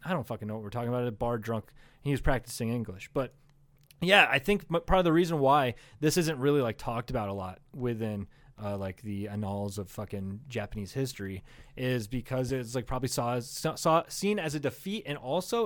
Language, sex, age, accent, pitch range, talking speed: English, male, 20-39, American, 120-155 Hz, 210 wpm